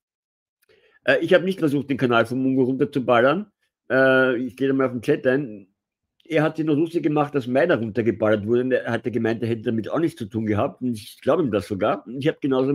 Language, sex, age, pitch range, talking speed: German, male, 50-69, 115-165 Hz, 225 wpm